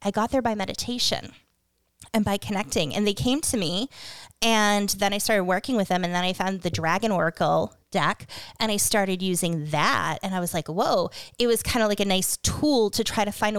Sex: female